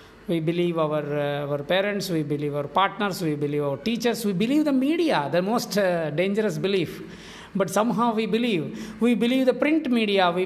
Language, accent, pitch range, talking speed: English, Indian, 165-220 Hz, 190 wpm